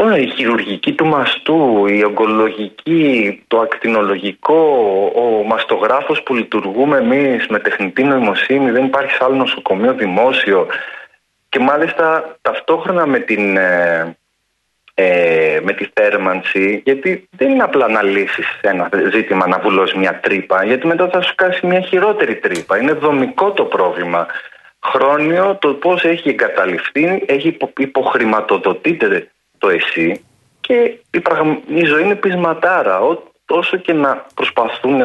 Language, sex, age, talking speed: Greek, male, 30-49, 130 wpm